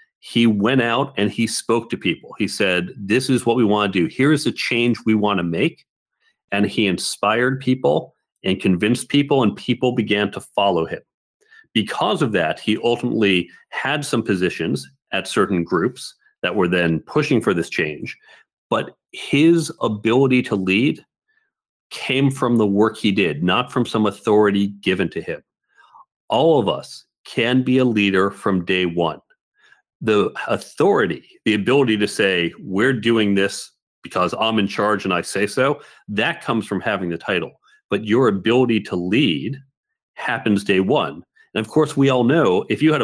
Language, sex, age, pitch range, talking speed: English, male, 40-59, 100-125 Hz, 175 wpm